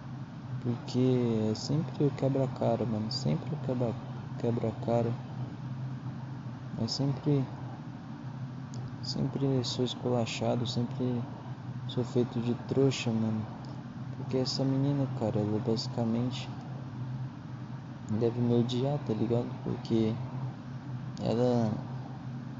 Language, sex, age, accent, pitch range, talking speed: Portuguese, male, 20-39, Brazilian, 120-130 Hz, 90 wpm